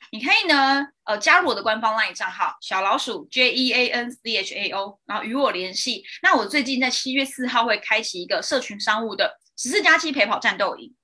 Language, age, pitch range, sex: Chinese, 20-39, 215-290 Hz, female